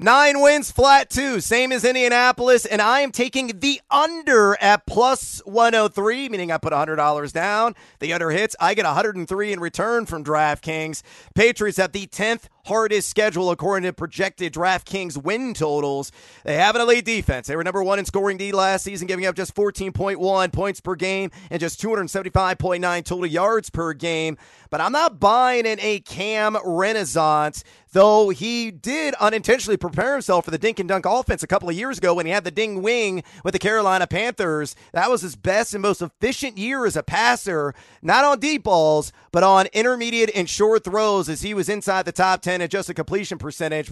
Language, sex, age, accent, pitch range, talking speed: English, male, 30-49, American, 180-230 Hz, 190 wpm